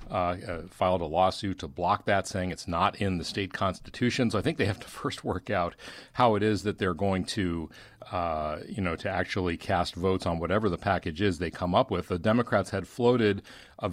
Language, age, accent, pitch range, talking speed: English, 40-59, American, 90-105 Hz, 225 wpm